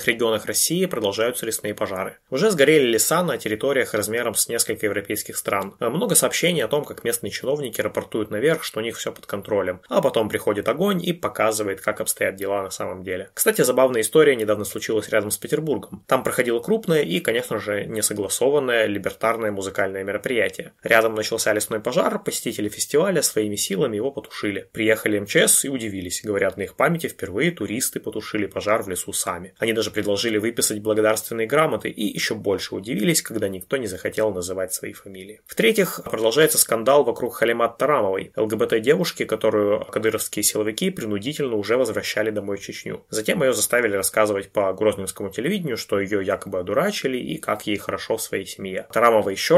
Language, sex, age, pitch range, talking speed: Russian, male, 20-39, 100-125 Hz, 165 wpm